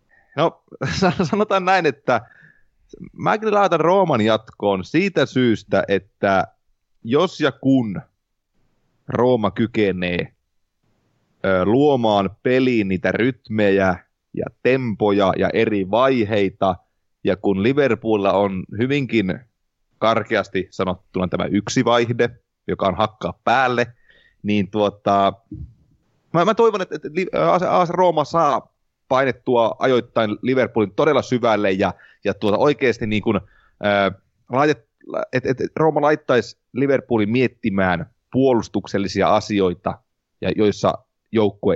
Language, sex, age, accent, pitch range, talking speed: Finnish, male, 30-49, native, 100-130 Hz, 100 wpm